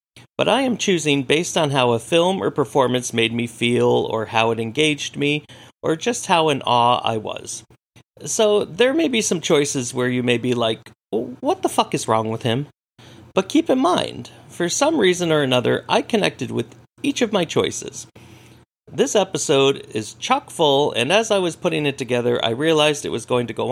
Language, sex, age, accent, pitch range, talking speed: English, male, 40-59, American, 115-170 Hz, 200 wpm